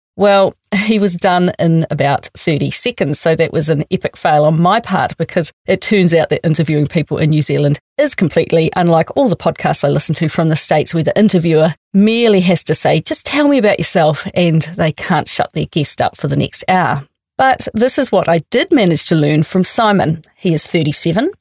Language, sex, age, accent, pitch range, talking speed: English, female, 40-59, Australian, 155-195 Hz, 215 wpm